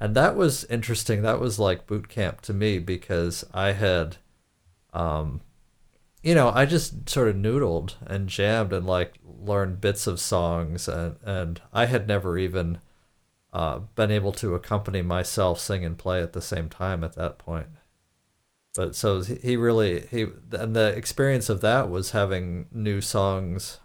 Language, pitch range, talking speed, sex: English, 90-110 Hz, 170 wpm, male